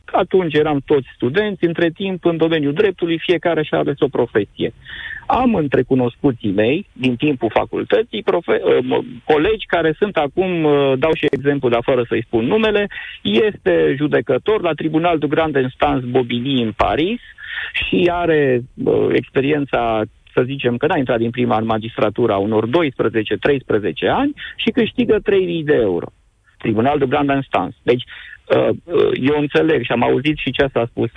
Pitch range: 120-175 Hz